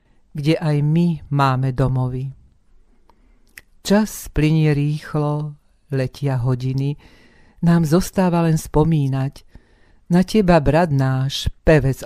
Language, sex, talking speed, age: Slovak, female, 95 wpm, 50-69